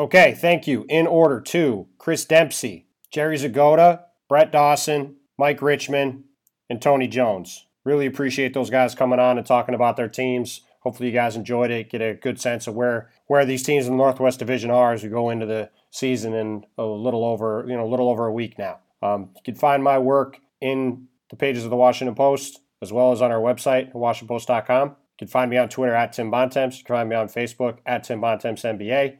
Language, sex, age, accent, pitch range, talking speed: English, male, 30-49, American, 115-130 Hz, 215 wpm